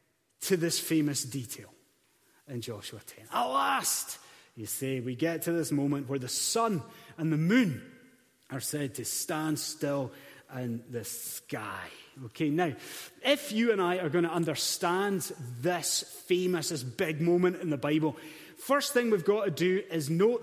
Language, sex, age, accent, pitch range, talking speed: English, male, 30-49, British, 155-210 Hz, 165 wpm